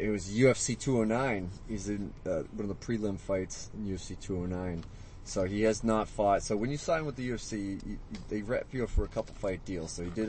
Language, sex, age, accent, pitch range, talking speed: English, male, 30-49, American, 100-120 Hz, 225 wpm